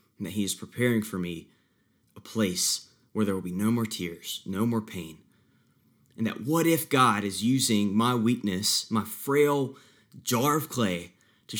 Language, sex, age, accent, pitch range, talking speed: English, male, 30-49, American, 95-115 Hz, 175 wpm